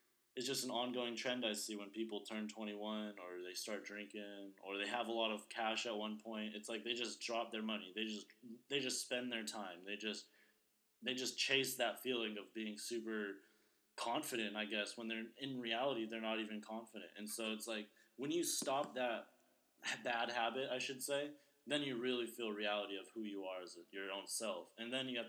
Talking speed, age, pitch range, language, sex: 220 wpm, 20-39, 105-125 Hz, English, male